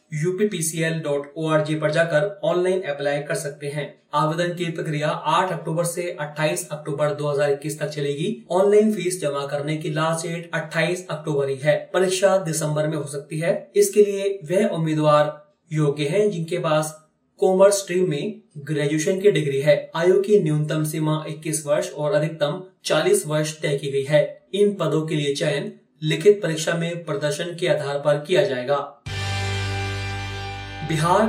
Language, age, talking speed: Hindi, 30-49, 155 wpm